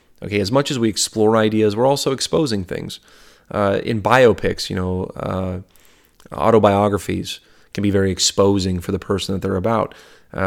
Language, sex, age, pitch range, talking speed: English, male, 30-49, 95-110 Hz, 165 wpm